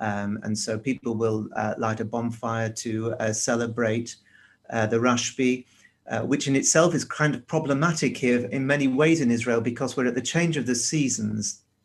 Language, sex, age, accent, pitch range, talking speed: English, male, 40-59, British, 115-135 Hz, 190 wpm